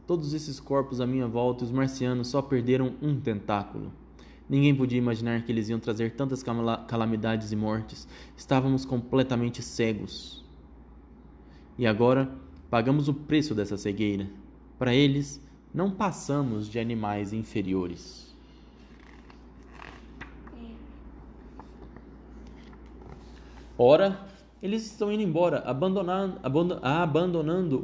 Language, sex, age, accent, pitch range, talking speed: Portuguese, male, 20-39, Brazilian, 110-160 Hz, 110 wpm